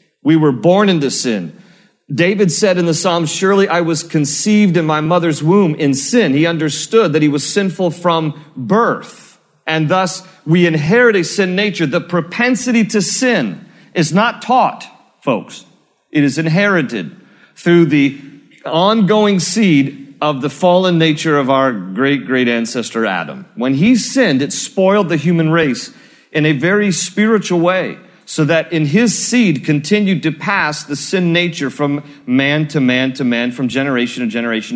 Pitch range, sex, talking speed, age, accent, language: 140-200 Hz, male, 160 wpm, 40-59, American, English